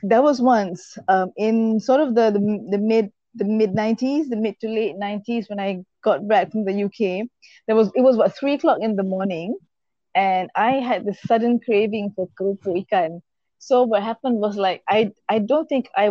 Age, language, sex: 20-39, Malay, female